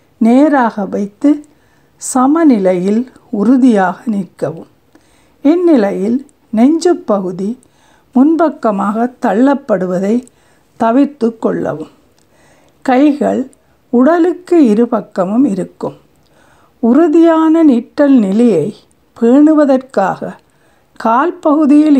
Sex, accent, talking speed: female, native, 55 wpm